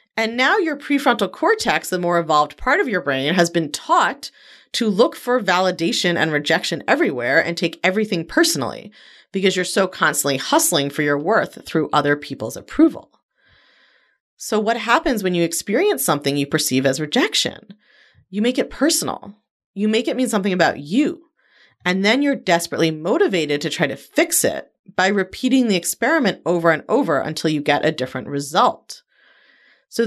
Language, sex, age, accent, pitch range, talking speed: English, female, 30-49, American, 155-255 Hz, 170 wpm